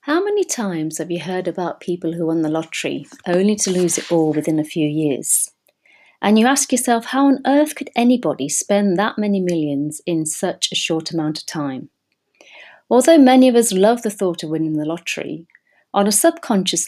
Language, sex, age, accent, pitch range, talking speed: English, female, 40-59, British, 160-220 Hz, 195 wpm